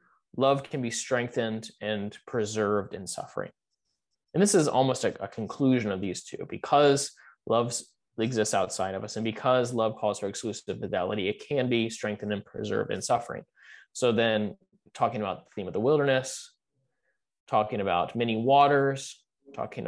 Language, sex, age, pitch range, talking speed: English, male, 20-39, 110-130 Hz, 160 wpm